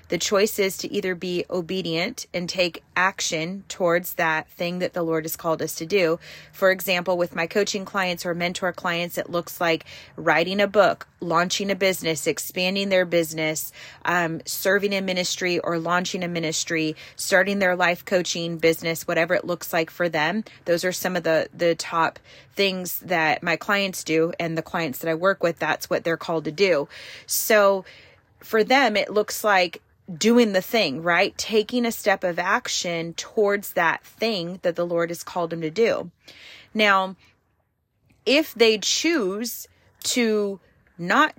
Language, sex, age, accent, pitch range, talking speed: English, female, 30-49, American, 170-200 Hz, 170 wpm